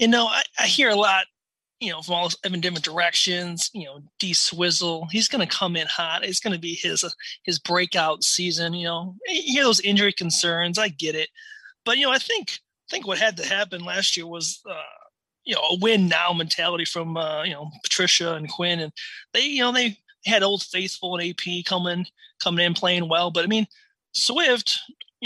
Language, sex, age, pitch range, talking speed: English, male, 20-39, 170-220 Hz, 215 wpm